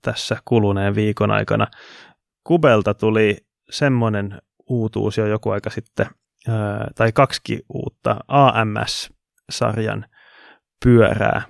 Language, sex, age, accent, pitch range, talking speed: Finnish, male, 20-39, native, 105-120 Hz, 90 wpm